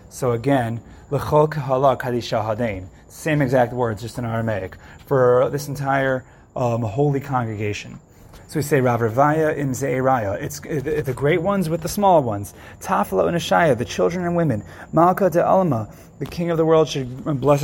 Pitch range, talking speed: 120-155 Hz, 125 wpm